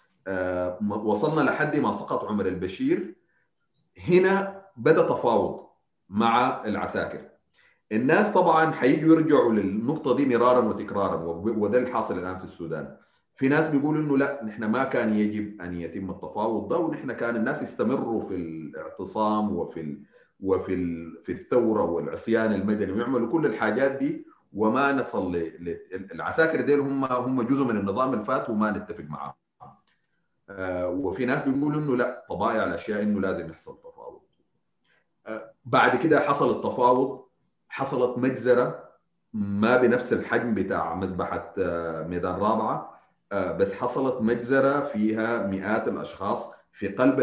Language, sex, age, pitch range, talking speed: Arabic, male, 40-59, 100-140 Hz, 130 wpm